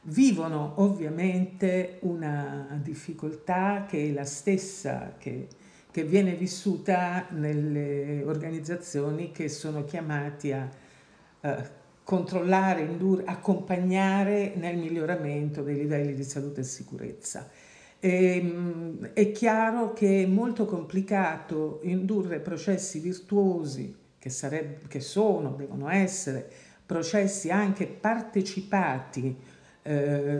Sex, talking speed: female, 90 wpm